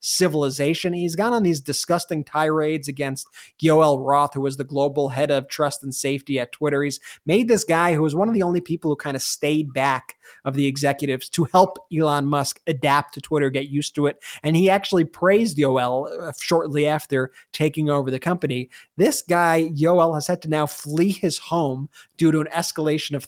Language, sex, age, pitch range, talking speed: English, male, 30-49, 140-170 Hz, 200 wpm